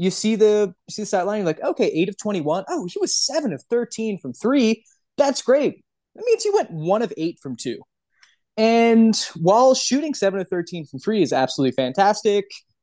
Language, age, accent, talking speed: English, 20-39, American, 190 wpm